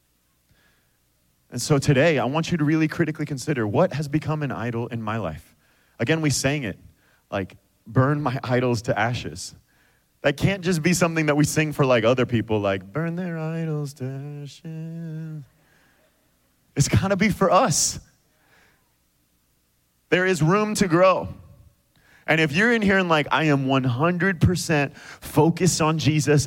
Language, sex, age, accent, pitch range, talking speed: English, male, 30-49, American, 135-180 Hz, 160 wpm